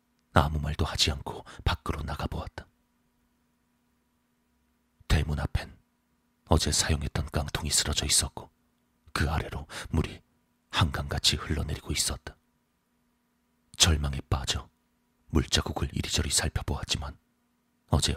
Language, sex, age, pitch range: Korean, male, 40-59, 75-80 Hz